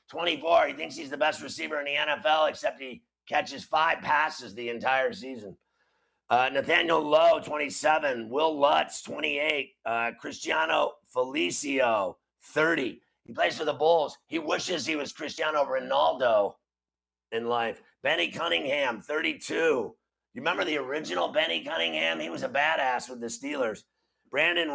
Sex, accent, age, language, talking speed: male, American, 50-69, English, 145 wpm